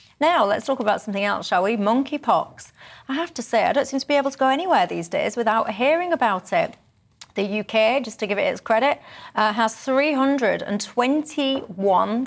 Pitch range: 215-280 Hz